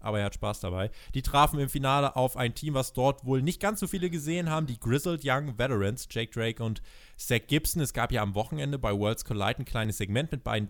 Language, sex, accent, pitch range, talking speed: German, male, German, 110-145 Hz, 240 wpm